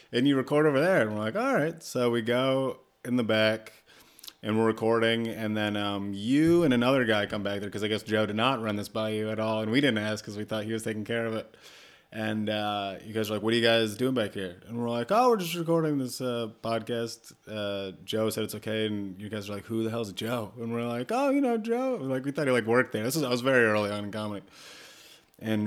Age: 30-49